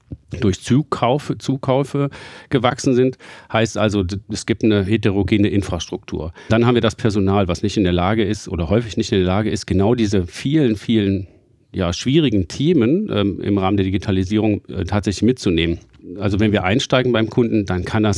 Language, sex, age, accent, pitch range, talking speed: German, male, 40-59, German, 95-115 Hz, 175 wpm